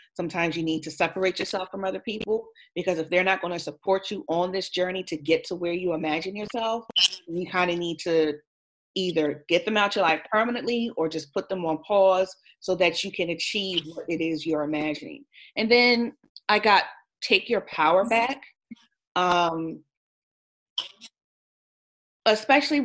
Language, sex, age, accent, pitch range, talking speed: English, female, 30-49, American, 160-205 Hz, 170 wpm